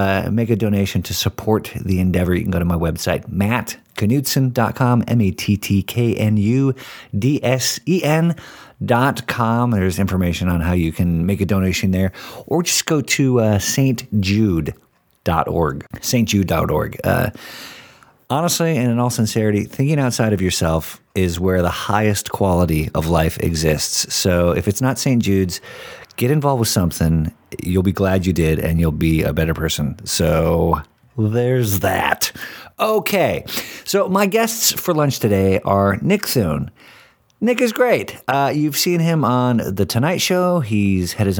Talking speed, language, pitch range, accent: 160 wpm, English, 95-140 Hz, American